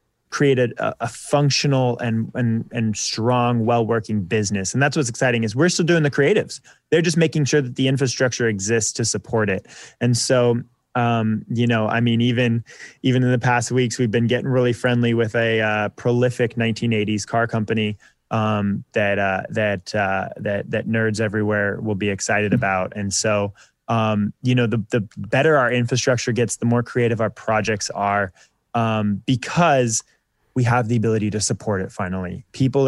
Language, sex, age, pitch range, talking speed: English, male, 20-39, 110-130 Hz, 175 wpm